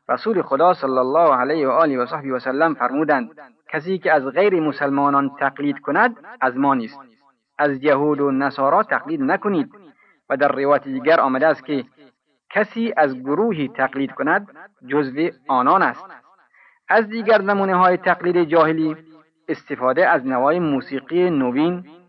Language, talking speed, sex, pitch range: Persian, 145 wpm, male, 140-185 Hz